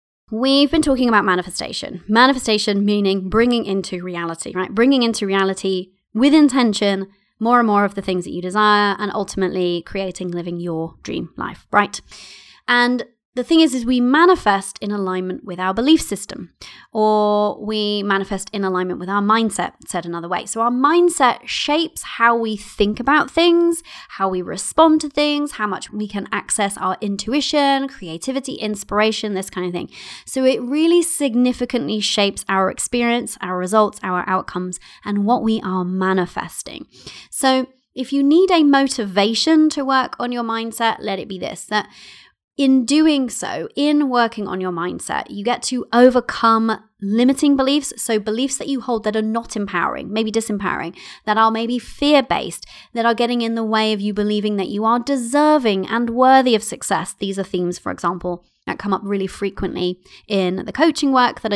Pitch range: 195-255 Hz